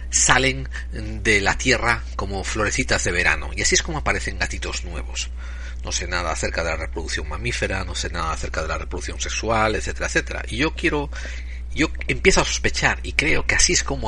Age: 50-69